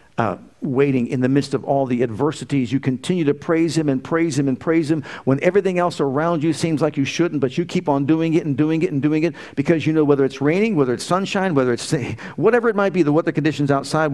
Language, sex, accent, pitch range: English, male, American, 135-170 Hz